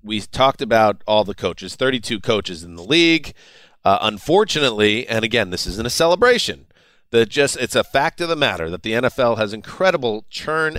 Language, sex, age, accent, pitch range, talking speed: English, male, 40-59, American, 105-135 Hz, 185 wpm